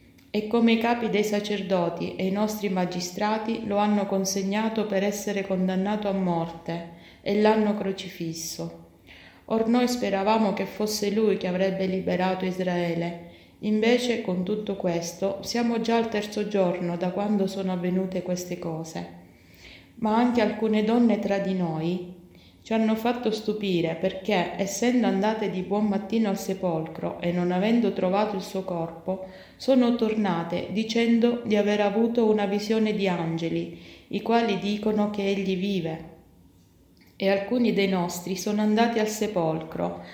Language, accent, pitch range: Italian, native, 180-215 Hz